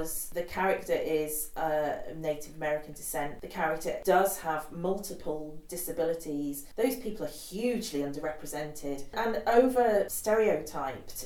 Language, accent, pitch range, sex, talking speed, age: English, British, 155-210 Hz, female, 110 wpm, 40-59